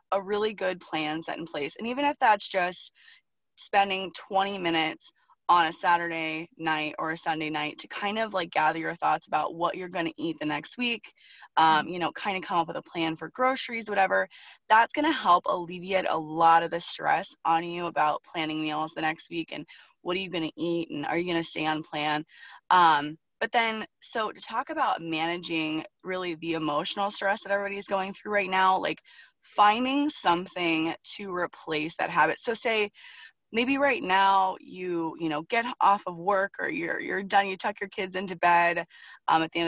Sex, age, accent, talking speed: female, 20-39, American, 205 wpm